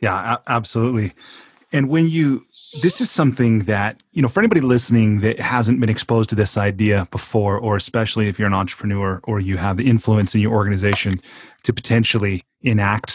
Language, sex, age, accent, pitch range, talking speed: English, male, 30-49, American, 105-130 Hz, 180 wpm